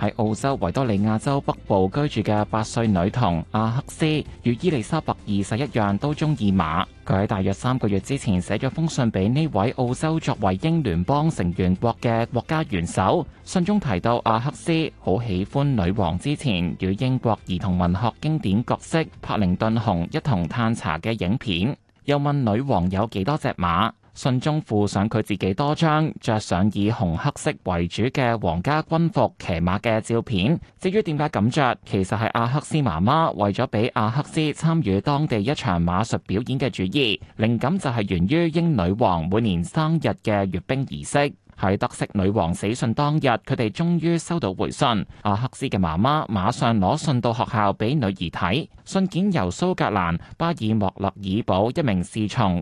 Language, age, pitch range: Chinese, 20-39, 100-145 Hz